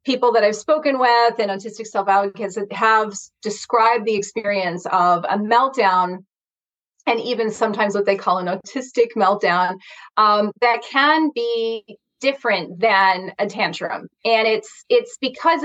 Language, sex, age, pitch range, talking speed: English, female, 30-49, 190-230 Hz, 140 wpm